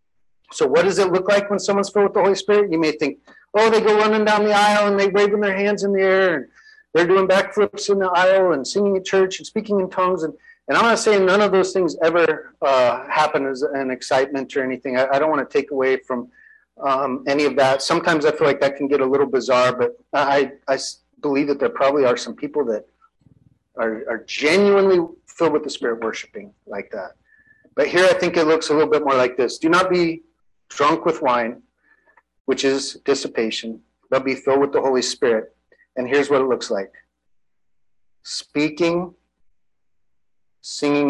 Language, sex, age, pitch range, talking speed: English, male, 30-49, 135-205 Hz, 205 wpm